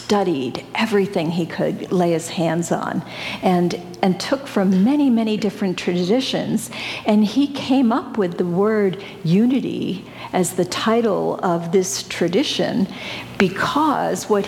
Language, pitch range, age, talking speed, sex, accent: English, 180-225 Hz, 50-69, 130 wpm, female, American